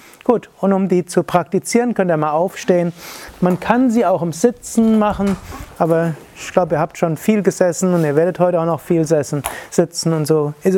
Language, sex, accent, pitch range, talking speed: German, male, German, 160-190 Hz, 200 wpm